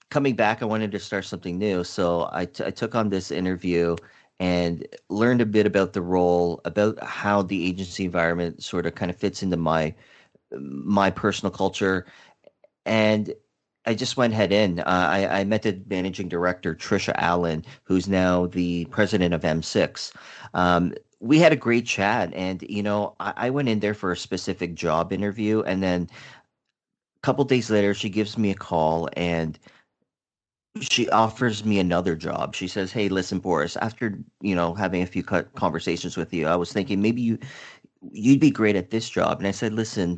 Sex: male